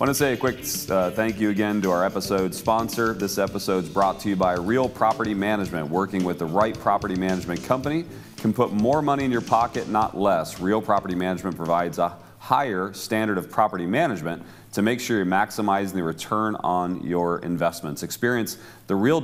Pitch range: 95-120 Hz